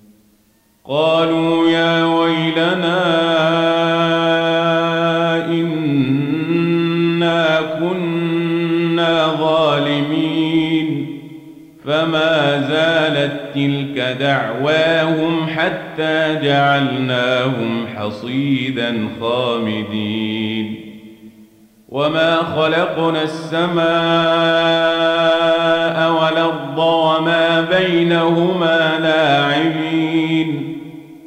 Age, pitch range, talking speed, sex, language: 40-59, 130-165 Hz, 40 wpm, male, Arabic